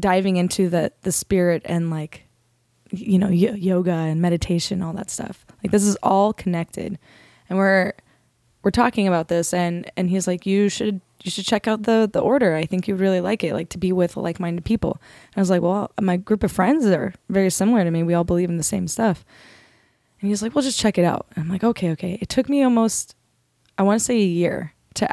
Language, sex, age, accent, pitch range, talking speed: English, female, 20-39, American, 175-200 Hz, 230 wpm